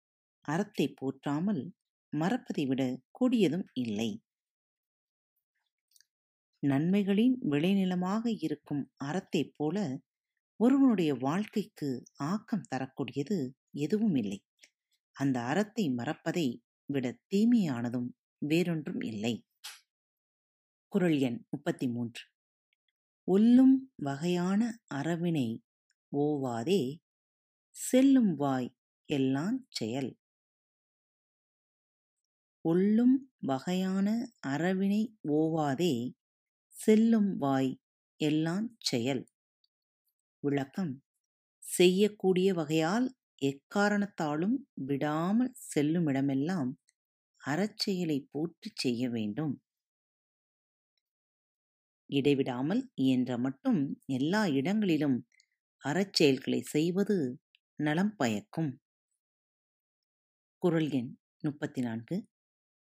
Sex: female